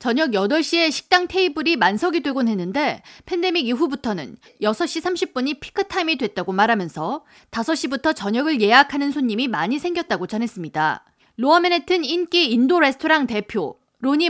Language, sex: Korean, female